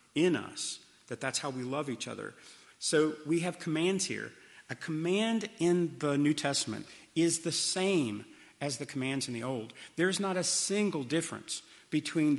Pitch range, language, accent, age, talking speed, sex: 130-165 Hz, English, American, 40-59, 170 wpm, male